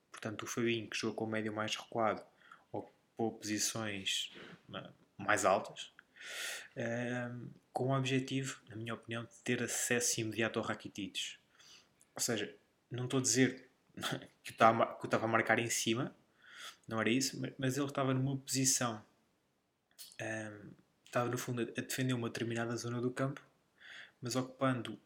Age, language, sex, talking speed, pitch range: 20-39, Portuguese, male, 140 wpm, 110-130 Hz